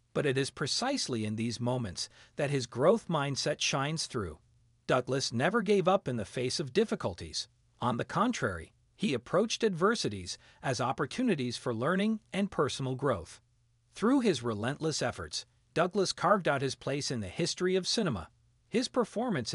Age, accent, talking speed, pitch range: 40-59, American, 155 wpm, 115-190 Hz